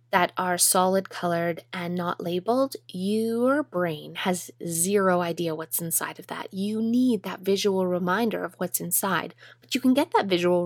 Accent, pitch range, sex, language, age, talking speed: American, 170-215 Hz, female, English, 20-39, 170 wpm